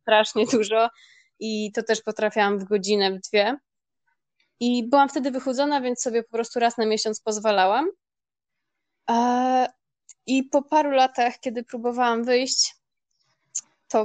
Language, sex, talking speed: Polish, female, 130 wpm